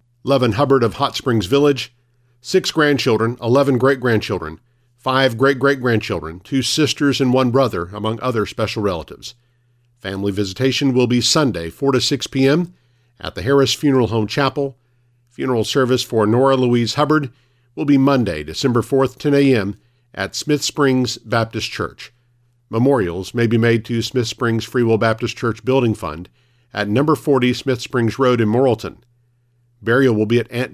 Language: English